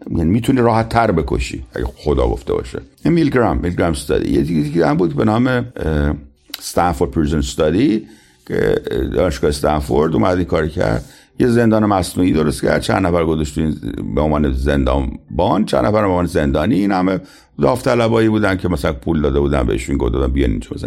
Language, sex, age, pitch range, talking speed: Persian, male, 50-69, 80-125 Hz, 160 wpm